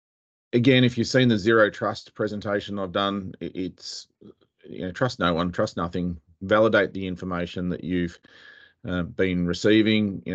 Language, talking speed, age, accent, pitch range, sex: English, 155 wpm, 40-59, Australian, 90-100 Hz, male